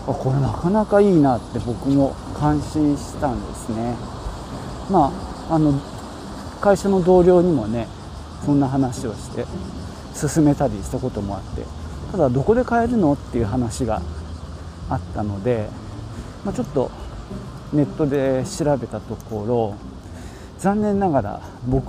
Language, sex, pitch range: Japanese, male, 105-150 Hz